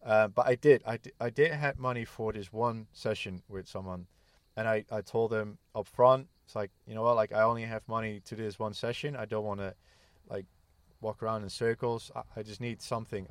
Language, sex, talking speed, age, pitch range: English, male, 235 wpm, 20-39, 100-115 Hz